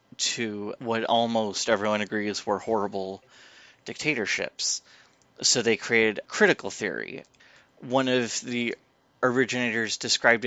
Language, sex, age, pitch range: English, male, 30-49, 110-125 Hz